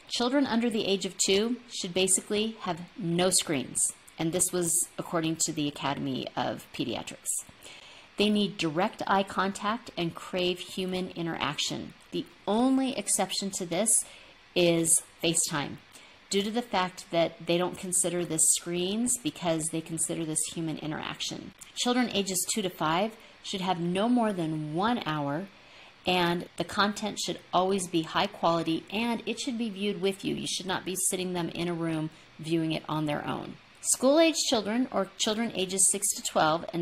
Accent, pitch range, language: American, 170-215 Hz, English